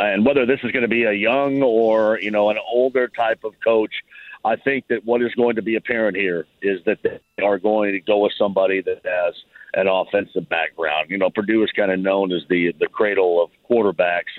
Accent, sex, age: American, male, 50-69